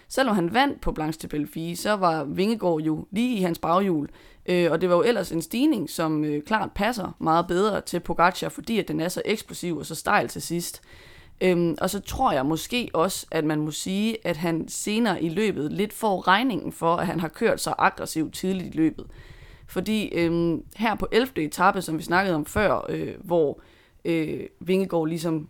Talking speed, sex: 200 wpm, female